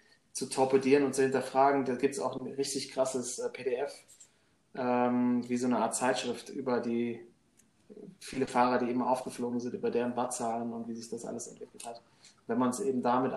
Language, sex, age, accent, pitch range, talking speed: German, male, 20-39, German, 120-135 Hz, 195 wpm